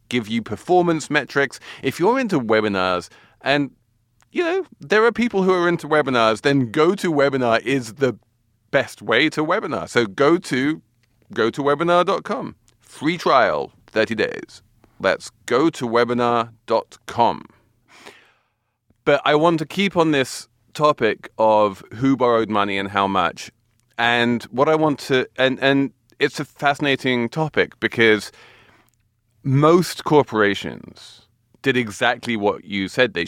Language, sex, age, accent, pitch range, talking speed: English, male, 30-49, British, 110-140 Hz, 140 wpm